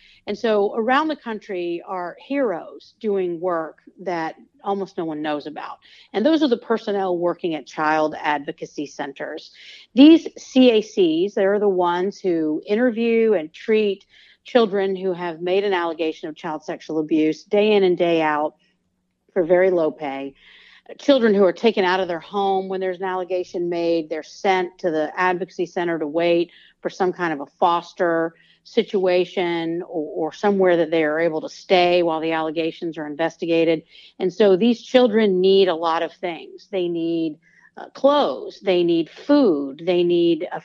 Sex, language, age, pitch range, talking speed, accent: female, English, 50-69, 165-210 Hz, 170 wpm, American